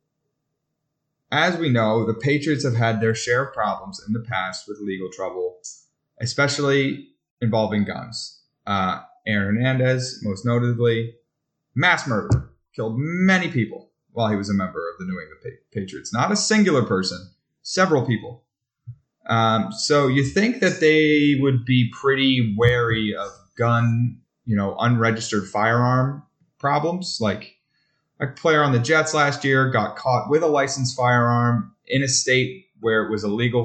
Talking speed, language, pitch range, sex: 150 wpm, English, 110-150 Hz, male